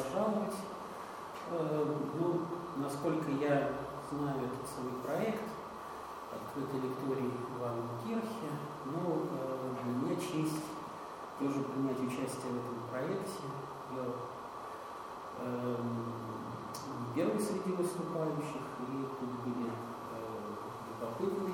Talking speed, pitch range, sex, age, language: 90 wpm, 125-165 Hz, male, 40-59, Russian